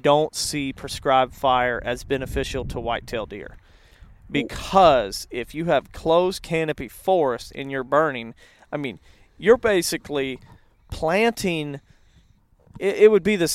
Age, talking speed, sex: 40-59, 130 wpm, male